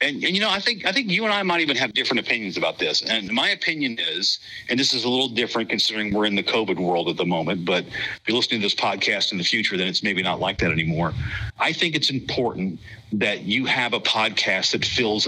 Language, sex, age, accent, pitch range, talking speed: English, male, 50-69, American, 105-140 Hz, 250 wpm